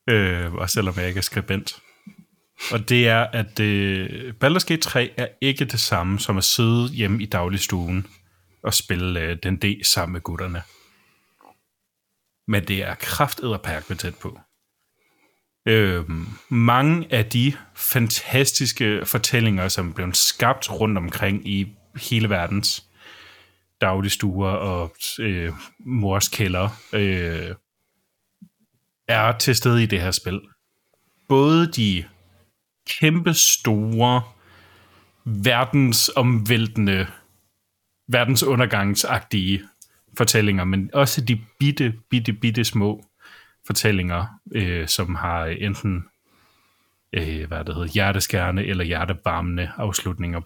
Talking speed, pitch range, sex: 105 wpm, 95-115 Hz, male